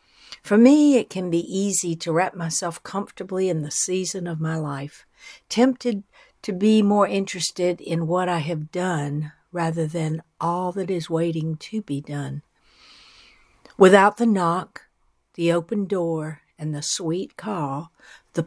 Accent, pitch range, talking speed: American, 165-195 Hz, 150 wpm